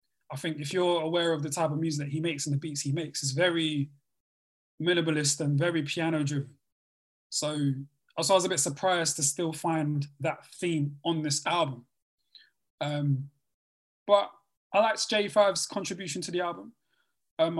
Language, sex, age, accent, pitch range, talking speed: English, male, 20-39, British, 145-175 Hz, 165 wpm